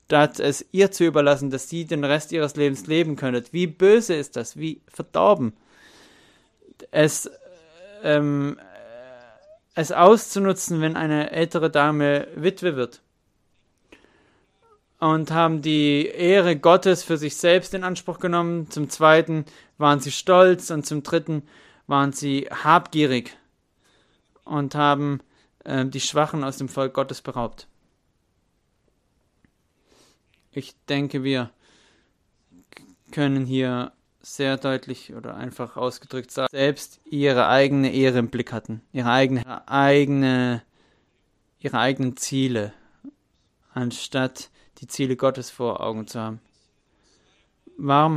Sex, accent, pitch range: male, German, 130-155 Hz